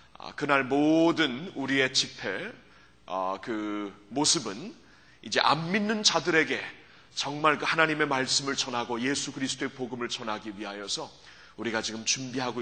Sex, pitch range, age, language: male, 125-170 Hz, 30-49, Korean